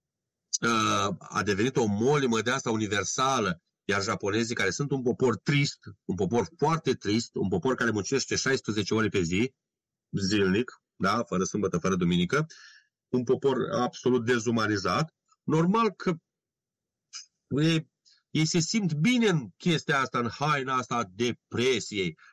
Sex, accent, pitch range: male, native, 120-170 Hz